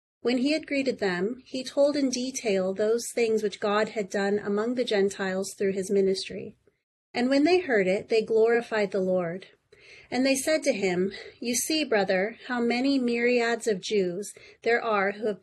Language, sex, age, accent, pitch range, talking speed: English, female, 30-49, American, 205-250 Hz, 185 wpm